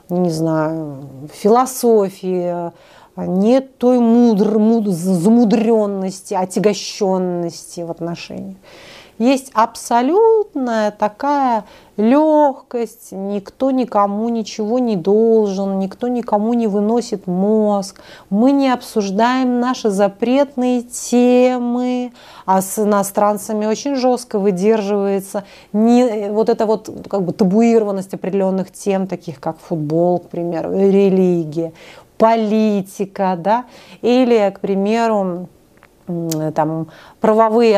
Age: 30-49